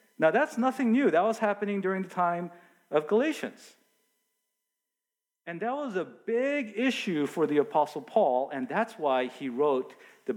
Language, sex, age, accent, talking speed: English, male, 50-69, American, 160 wpm